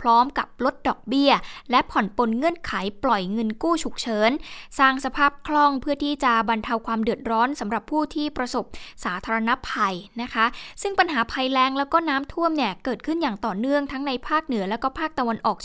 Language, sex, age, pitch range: Thai, female, 10-29, 225-290 Hz